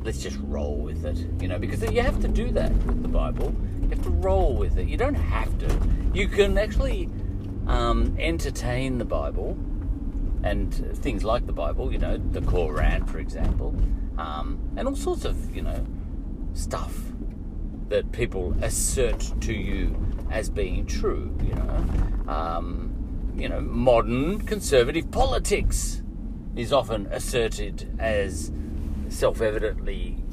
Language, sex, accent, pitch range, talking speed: English, male, Australian, 75-95 Hz, 145 wpm